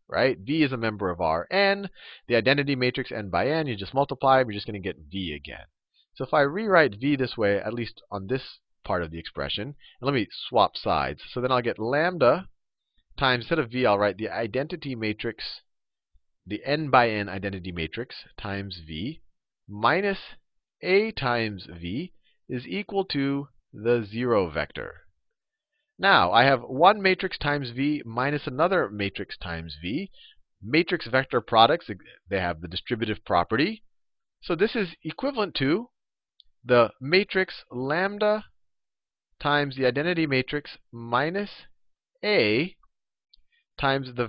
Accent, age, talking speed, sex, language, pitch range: American, 30-49, 150 wpm, male, English, 105-155 Hz